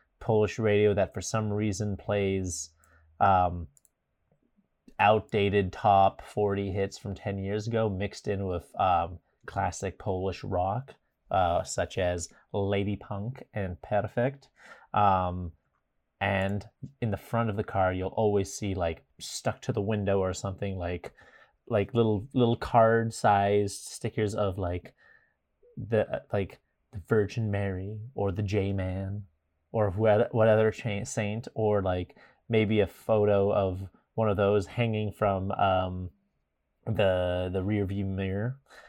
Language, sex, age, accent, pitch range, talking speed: English, male, 30-49, American, 95-110 Hz, 135 wpm